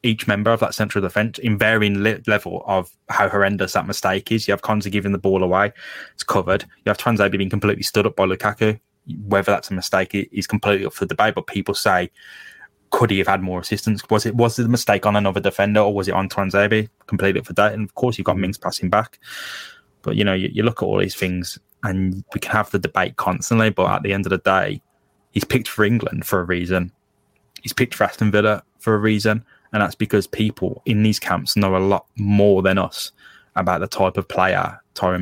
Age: 10-29